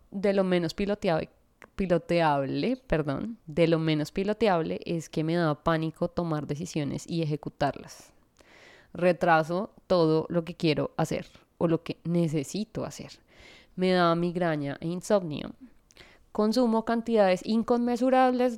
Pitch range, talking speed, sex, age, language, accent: 165-200 Hz, 125 wpm, female, 20-39, Spanish, Colombian